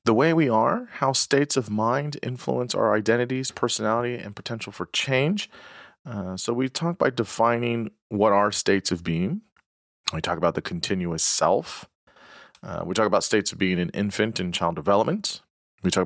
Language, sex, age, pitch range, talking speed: English, male, 30-49, 90-120 Hz, 175 wpm